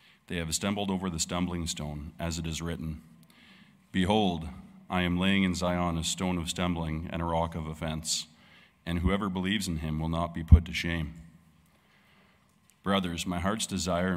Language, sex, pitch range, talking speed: English, male, 80-95 Hz, 175 wpm